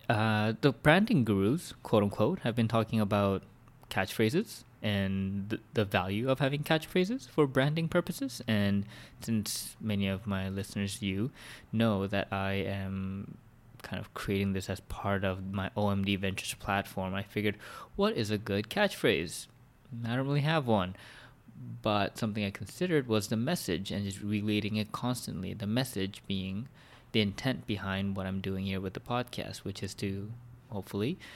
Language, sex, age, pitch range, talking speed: English, male, 20-39, 100-125 Hz, 155 wpm